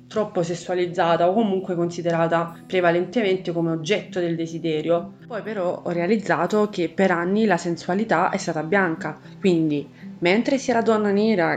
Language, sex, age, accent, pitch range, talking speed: Italian, female, 20-39, native, 170-200 Hz, 145 wpm